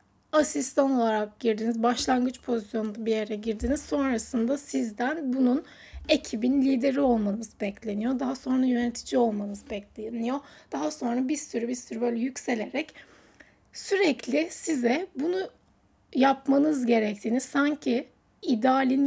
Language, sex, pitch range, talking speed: Turkish, female, 230-290 Hz, 110 wpm